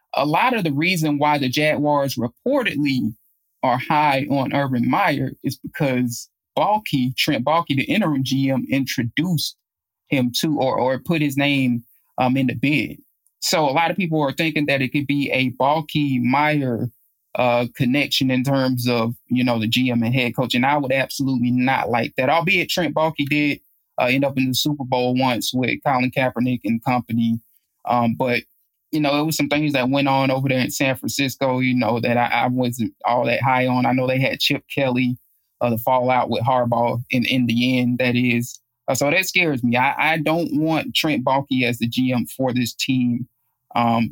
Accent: American